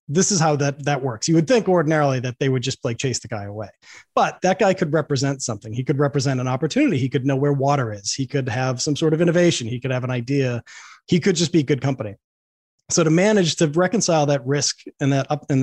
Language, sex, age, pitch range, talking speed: English, male, 30-49, 125-150 Hz, 250 wpm